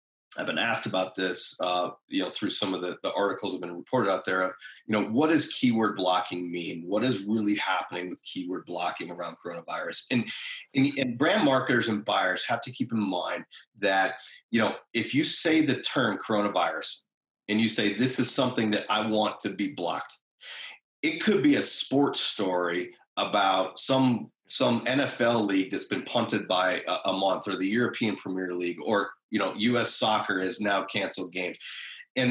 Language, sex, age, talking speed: English, male, 30-49, 190 wpm